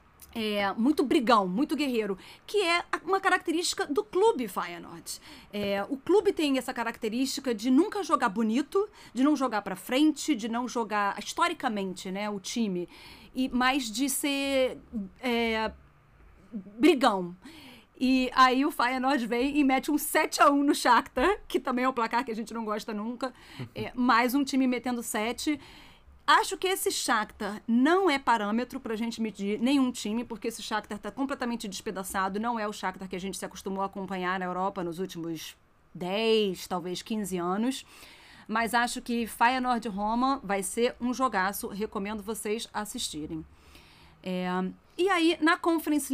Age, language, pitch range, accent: 40-59, Portuguese, 210-275 Hz, Brazilian